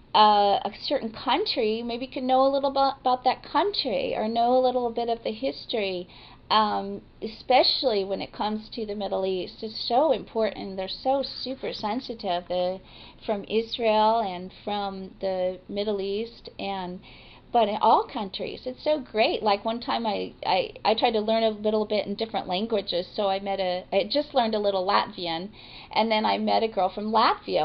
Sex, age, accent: female, 40-59, American